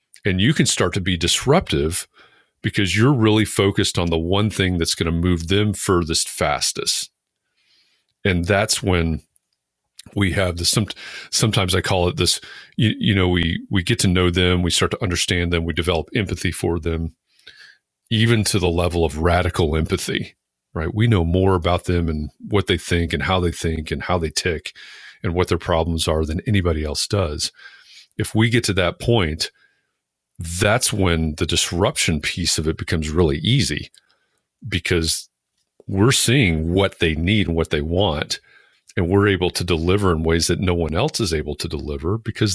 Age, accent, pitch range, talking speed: 40-59, American, 80-100 Hz, 180 wpm